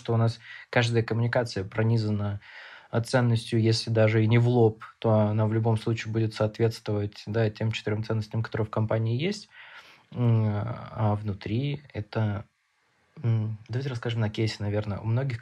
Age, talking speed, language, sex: 20-39, 145 wpm, Russian, male